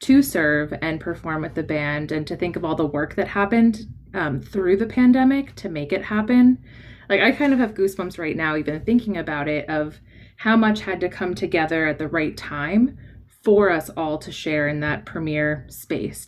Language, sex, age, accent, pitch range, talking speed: English, female, 20-39, American, 150-190 Hz, 205 wpm